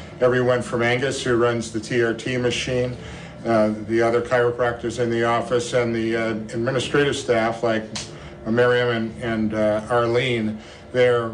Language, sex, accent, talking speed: English, male, American, 150 wpm